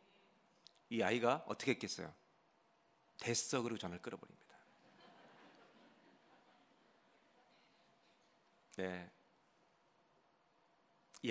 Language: Korean